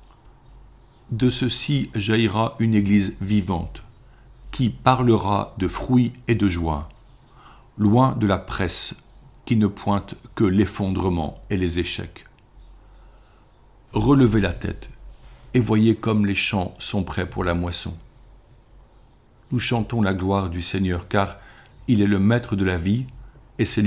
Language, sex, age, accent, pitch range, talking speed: French, male, 50-69, French, 95-115 Hz, 135 wpm